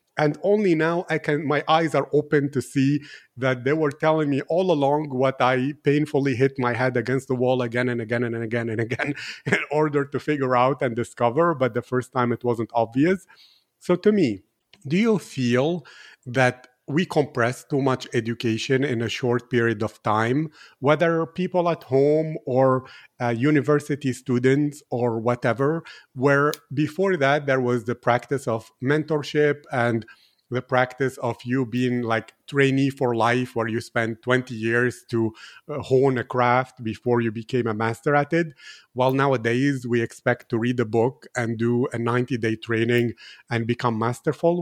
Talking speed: 170 wpm